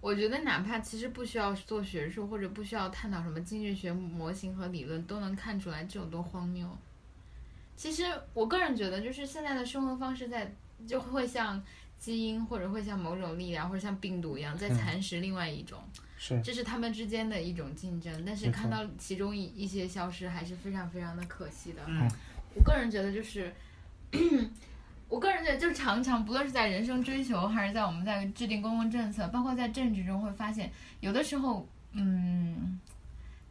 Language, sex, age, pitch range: Chinese, female, 10-29, 175-230 Hz